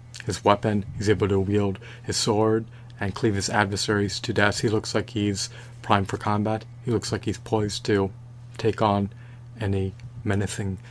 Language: English